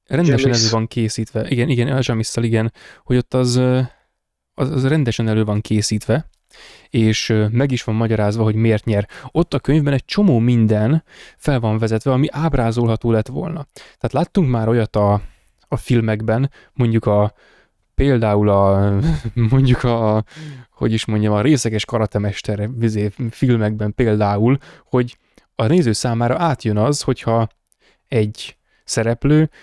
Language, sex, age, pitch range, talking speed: Hungarian, male, 20-39, 110-135 Hz, 135 wpm